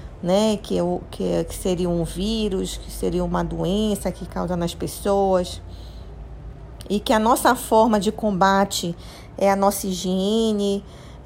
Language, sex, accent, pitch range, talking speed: Portuguese, female, Brazilian, 180-220 Hz, 135 wpm